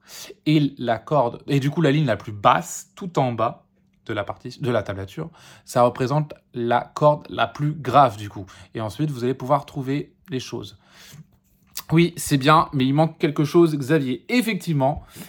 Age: 20-39